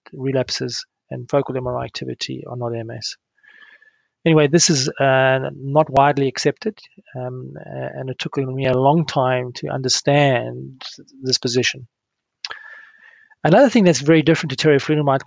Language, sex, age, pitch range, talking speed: English, male, 30-49, 130-175 Hz, 135 wpm